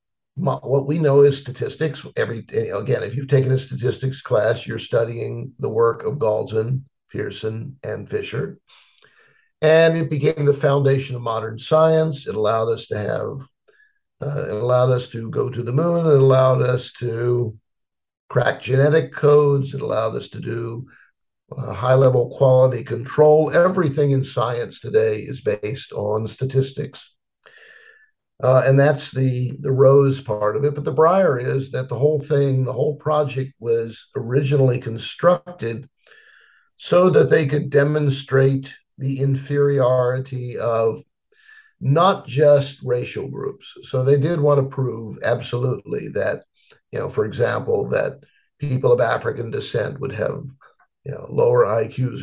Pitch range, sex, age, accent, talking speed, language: 125-155 Hz, male, 50-69, American, 145 wpm, English